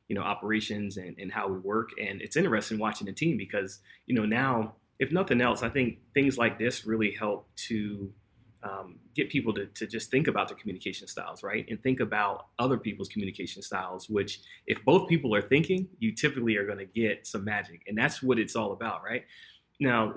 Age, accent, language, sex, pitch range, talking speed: 30-49, American, English, male, 105-135 Hz, 210 wpm